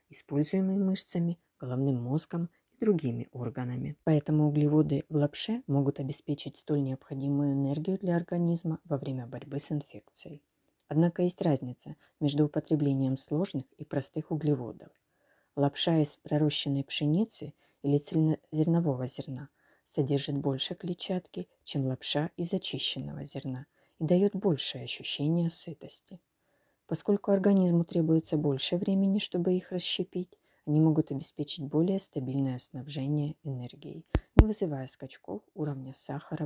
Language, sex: Ukrainian, female